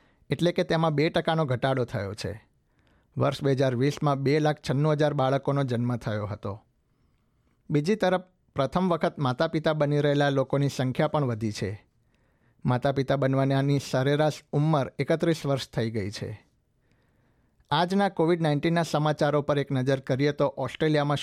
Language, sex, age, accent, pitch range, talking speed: Gujarati, male, 60-79, native, 130-155 Hz, 145 wpm